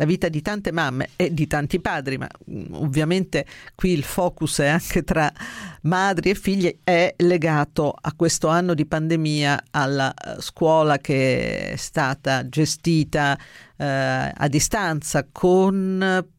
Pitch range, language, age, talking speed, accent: 145-175 Hz, Italian, 50-69, 135 wpm, native